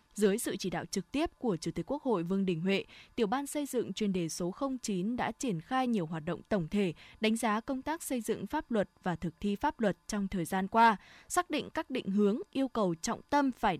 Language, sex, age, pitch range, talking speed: Vietnamese, female, 20-39, 195-250 Hz, 250 wpm